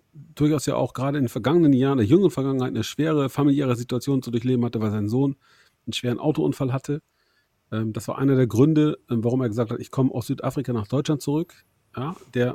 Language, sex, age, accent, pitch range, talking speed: German, male, 40-59, German, 120-160 Hz, 205 wpm